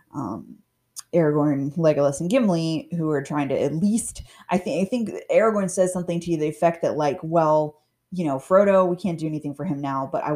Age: 20-39